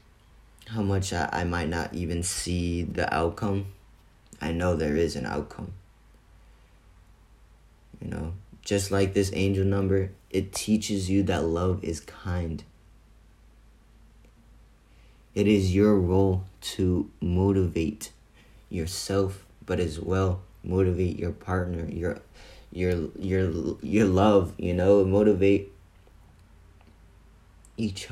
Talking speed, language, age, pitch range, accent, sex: 110 wpm, English, 20-39, 90-110 Hz, American, male